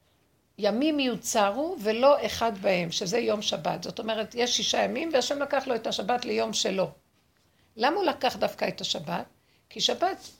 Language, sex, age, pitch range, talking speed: Hebrew, female, 60-79, 220-285 Hz, 160 wpm